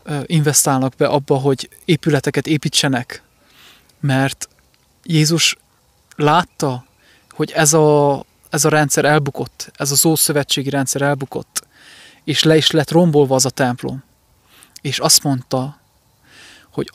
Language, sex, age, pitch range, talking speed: English, male, 20-39, 130-155 Hz, 115 wpm